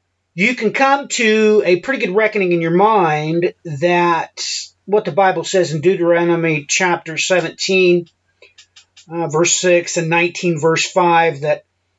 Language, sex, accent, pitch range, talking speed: English, male, American, 145-185 Hz, 140 wpm